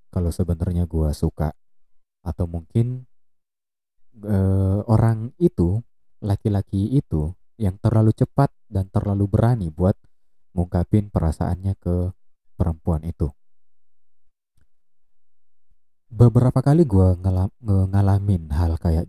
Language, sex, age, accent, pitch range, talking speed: Indonesian, male, 30-49, native, 80-100 Hz, 95 wpm